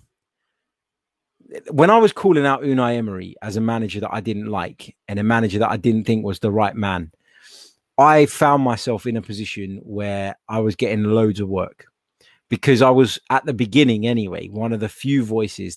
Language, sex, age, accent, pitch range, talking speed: English, male, 20-39, British, 105-125 Hz, 190 wpm